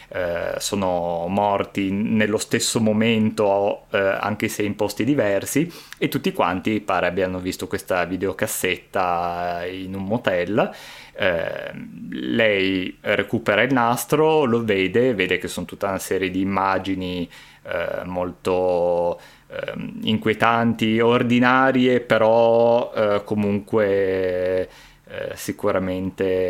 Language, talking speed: Italian, 105 wpm